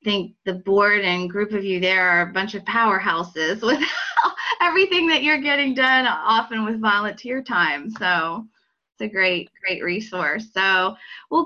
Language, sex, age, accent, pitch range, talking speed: English, female, 20-39, American, 180-220 Hz, 160 wpm